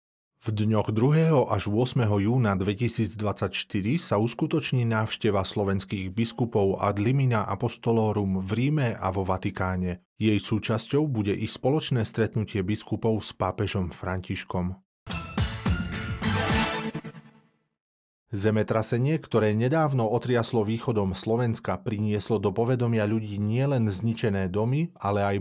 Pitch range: 100-120 Hz